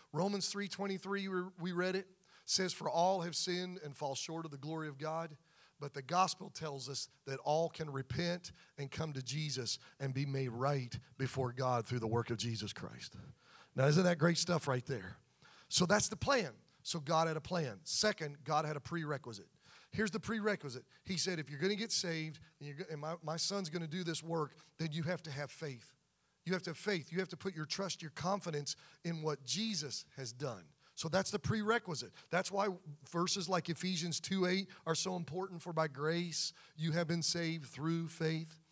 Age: 40-59